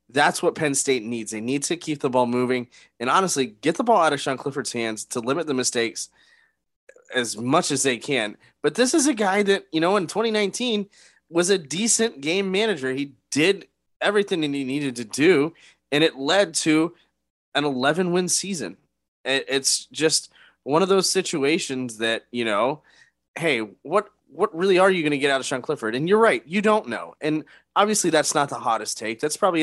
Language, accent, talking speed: English, American, 200 wpm